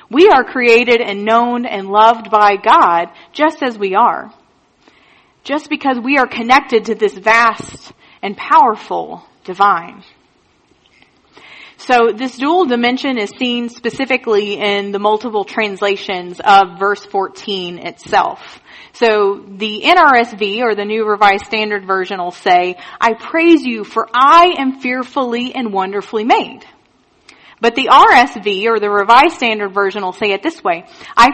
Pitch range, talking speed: 205-275 Hz, 140 wpm